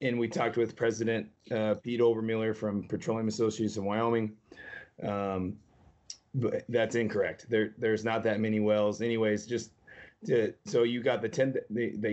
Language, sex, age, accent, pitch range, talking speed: English, male, 30-49, American, 105-115 Hz, 160 wpm